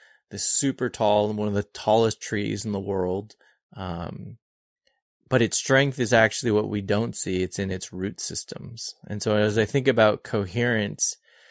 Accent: American